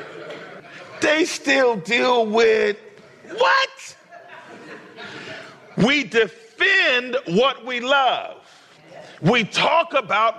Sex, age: male, 40-59